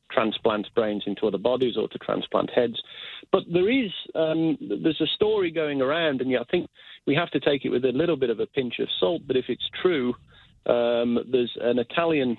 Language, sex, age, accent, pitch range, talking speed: English, male, 40-59, British, 115-140 Hz, 215 wpm